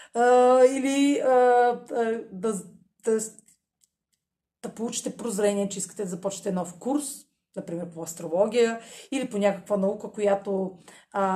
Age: 30-49